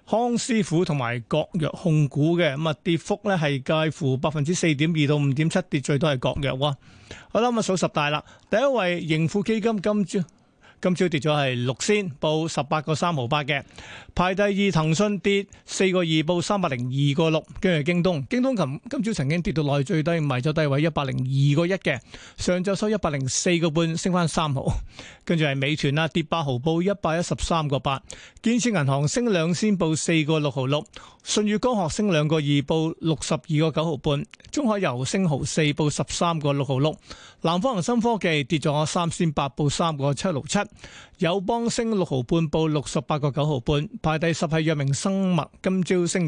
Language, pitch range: Chinese, 145-185 Hz